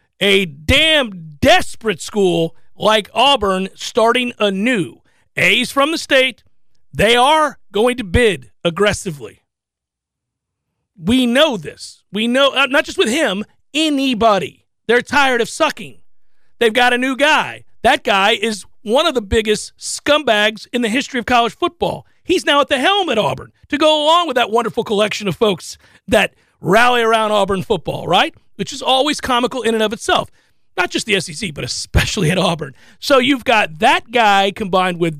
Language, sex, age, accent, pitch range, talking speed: English, male, 40-59, American, 185-280 Hz, 165 wpm